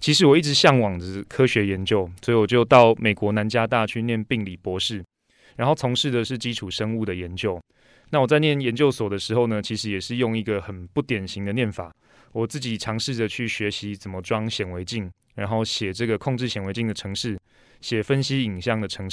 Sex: male